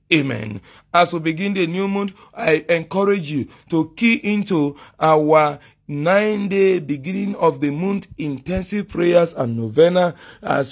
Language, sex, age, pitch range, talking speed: English, male, 40-59, 140-185 Hz, 135 wpm